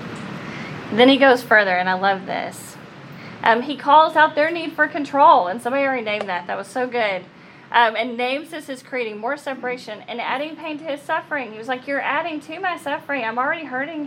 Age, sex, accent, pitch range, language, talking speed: 30-49, female, American, 210-275 Hz, English, 215 wpm